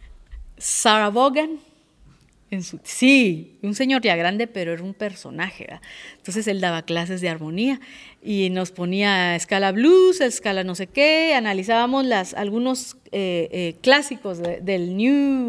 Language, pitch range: Spanish, 190-270 Hz